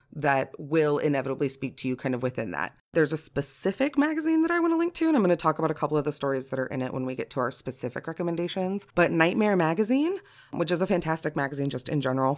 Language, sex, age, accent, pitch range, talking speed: English, female, 30-49, American, 145-190 Hz, 255 wpm